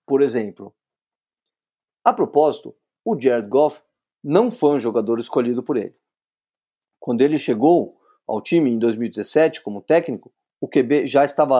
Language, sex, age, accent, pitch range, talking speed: Portuguese, male, 50-69, Brazilian, 135-200 Hz, 140 wpm